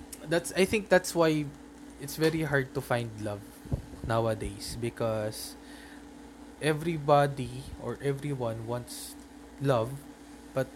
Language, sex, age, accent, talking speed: Filipino, male, 20-39, native, 105 wpm